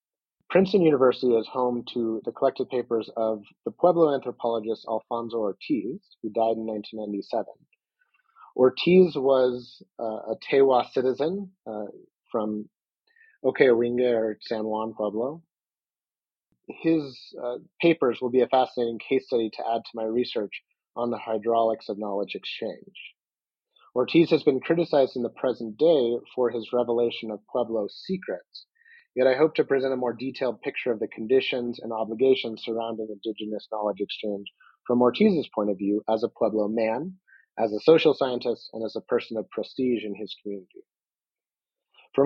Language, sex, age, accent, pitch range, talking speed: English, male, 30-49, American, 110-135 Hz, 150 wpm